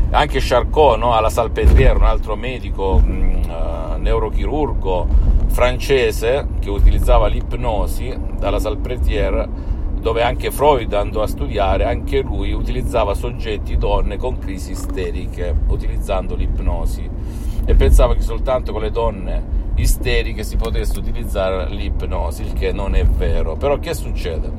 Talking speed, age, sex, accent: 125 wpm, 50-69, male, native